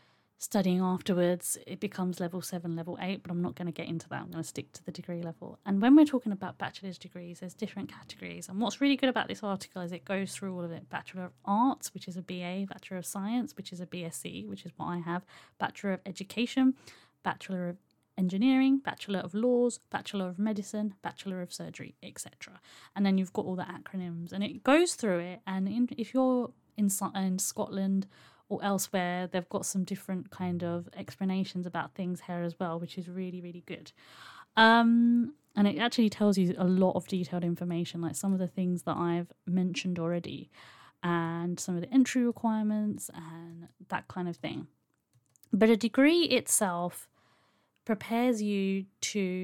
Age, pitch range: 30-49, 175-210 Hz